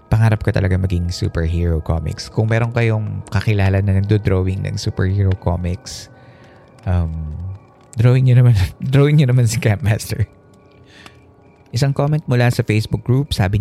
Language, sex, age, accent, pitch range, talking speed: Filipino, male, 20-39, native, 95-120 Hz, 130 wpm